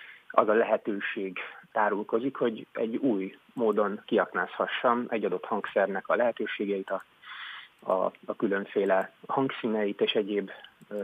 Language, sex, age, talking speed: Hungarian, male, 30-49, 120 wpm